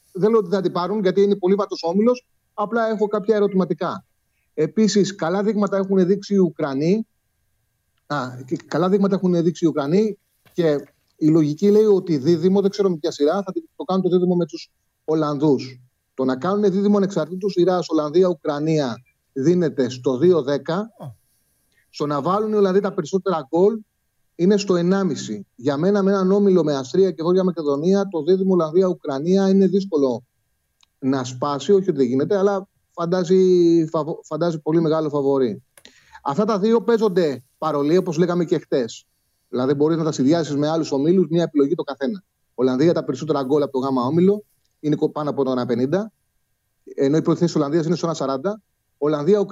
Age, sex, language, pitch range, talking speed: 30-49, male, Greek, 150-195 Hz, 150 wpm